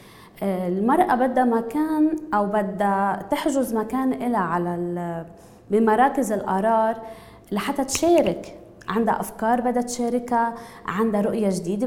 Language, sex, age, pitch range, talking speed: English, female, 20-39, 205-270 Hz, 100 wpm